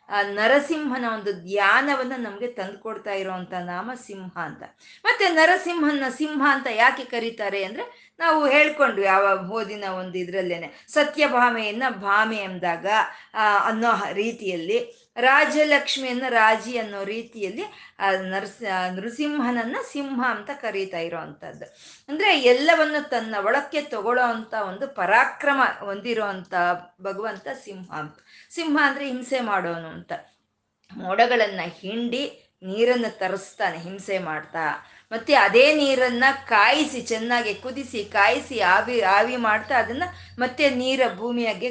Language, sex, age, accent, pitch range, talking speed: Kannada, female, 20-39, native, 195-265 Hz, 100 wpm